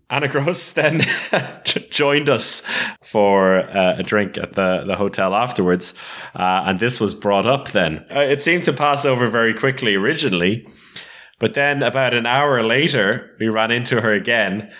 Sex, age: male, 20-39